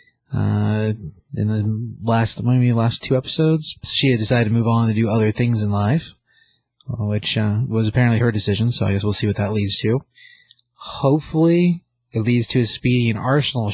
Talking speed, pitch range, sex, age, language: 190 wpm, 105-130 Hz, male, 30-49, English